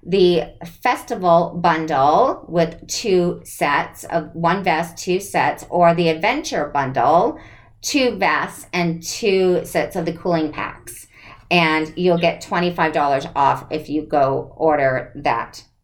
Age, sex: 40-59, female